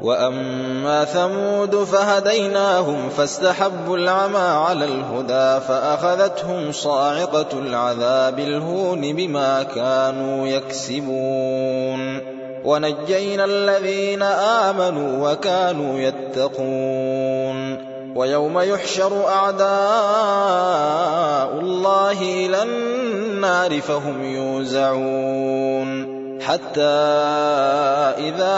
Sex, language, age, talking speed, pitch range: male, Arabic, 20-39, 60 wpm, 135-185 Hz